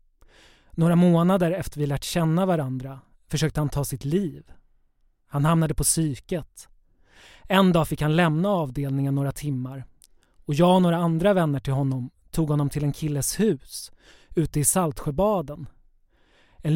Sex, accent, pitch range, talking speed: male, Swedish, 140-175 Hz, 150 wpm